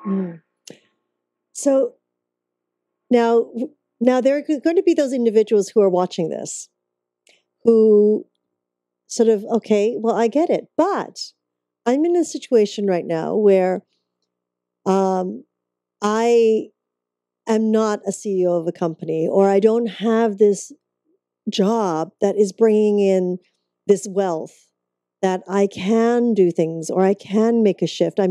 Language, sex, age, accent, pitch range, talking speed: English, female, 40-59, American, 160-230 Hz, 135 wpm